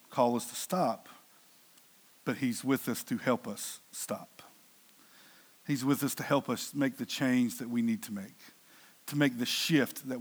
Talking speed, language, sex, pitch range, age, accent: 180 wpm, English, male, 145-205 Hz, 50-69, American